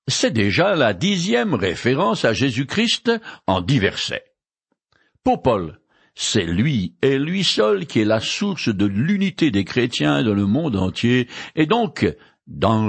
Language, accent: French, French